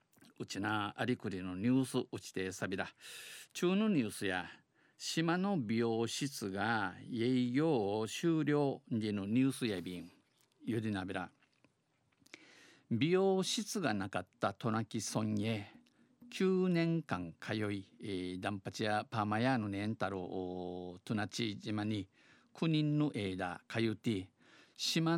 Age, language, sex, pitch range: 50-69, Japanese, male, 100-135 Hz